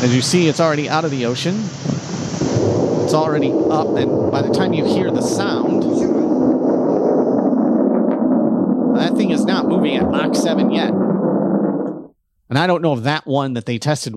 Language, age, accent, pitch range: English, 40-59, American, 95-155 Hz